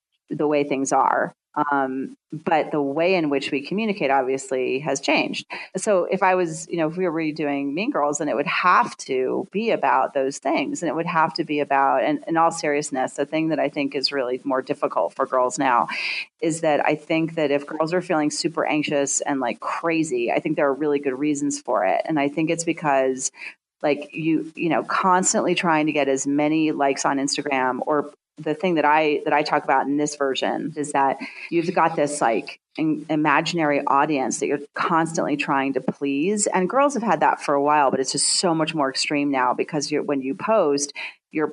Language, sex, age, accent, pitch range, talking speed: English, female, 30-49, American, 140-165 Hz, 215 wpm